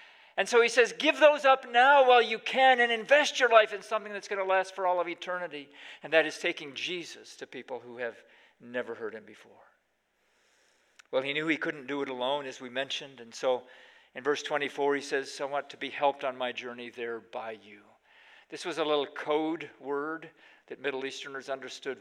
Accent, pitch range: American, 135-195 Hz